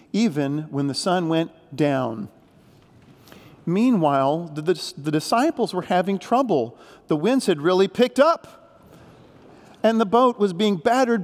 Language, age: English, 40-59